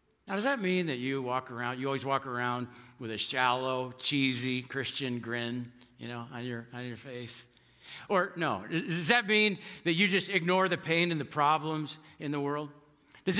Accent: American